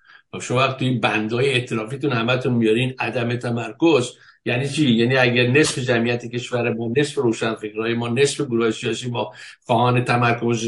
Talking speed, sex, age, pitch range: 150 wpm, male, 60-79, 115-150 Hz